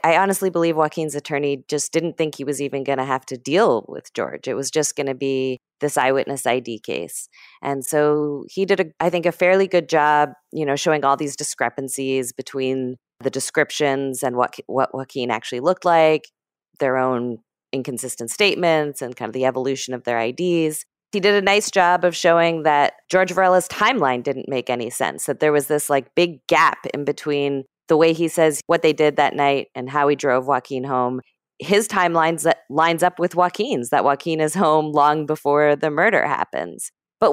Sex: female